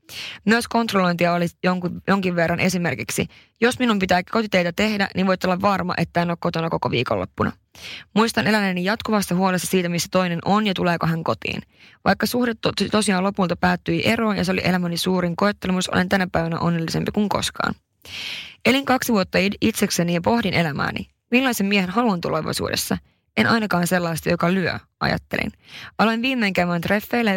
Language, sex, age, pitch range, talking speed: Finnish, female, 20-39, 175-210 Hz, 160 wpm